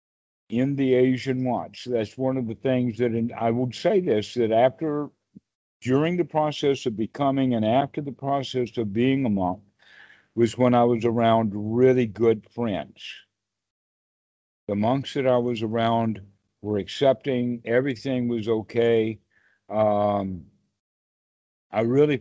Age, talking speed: 60-79, 140 wpm